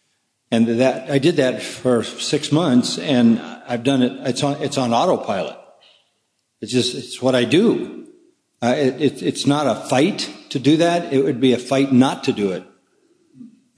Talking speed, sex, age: 185 wpm, male, 50-69